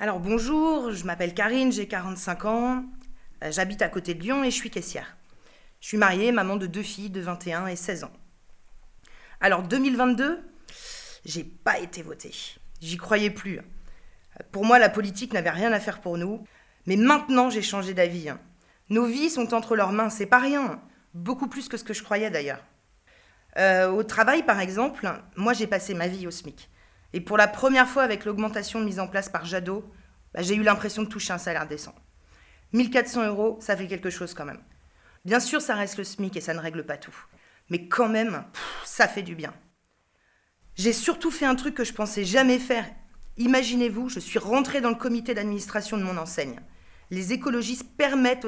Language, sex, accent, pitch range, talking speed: French, female, French, 185-240 Hz, 190 wpm